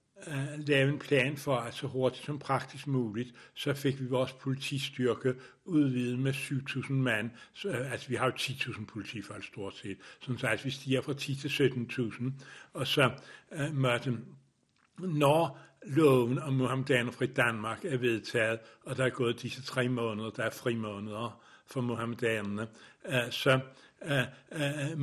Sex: male